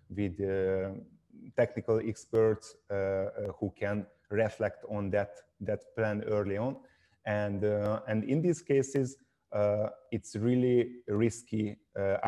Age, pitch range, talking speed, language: 30-49, 100-115 Hz, 125 wpm, English